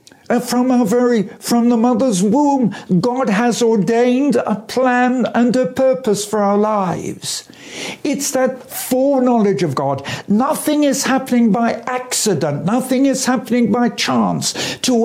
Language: English